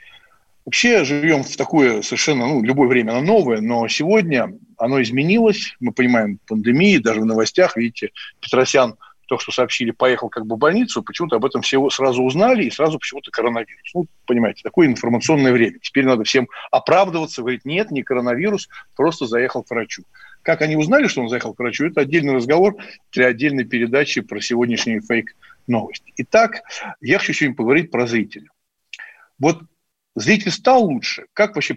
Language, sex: Russian, male